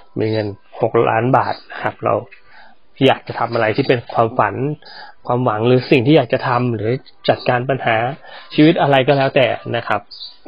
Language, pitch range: Thai, 125-160 Hz